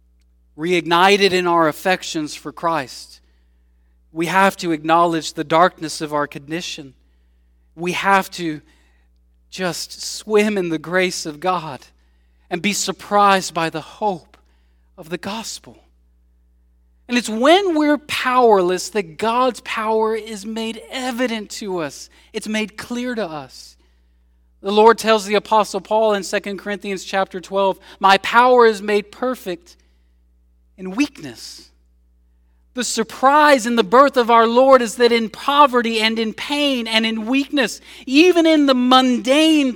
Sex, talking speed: male, 140 wpm